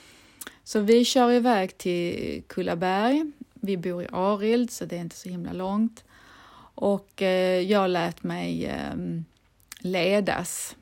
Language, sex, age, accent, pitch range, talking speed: Swedish, female, 30-49, native, 170-215 Hz, 120 wpm